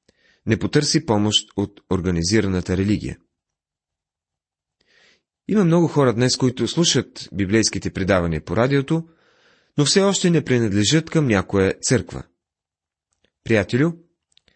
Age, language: 30-49, Bulgarian